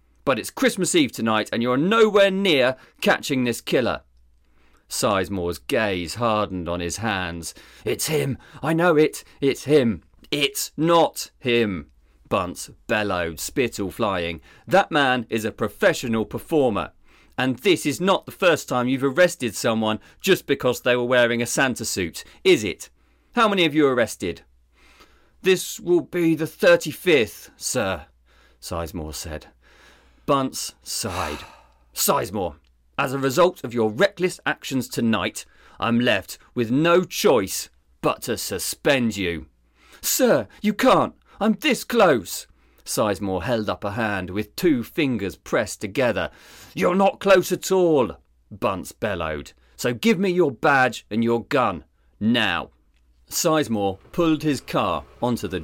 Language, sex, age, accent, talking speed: English, male, 40-59, British, 140 wpm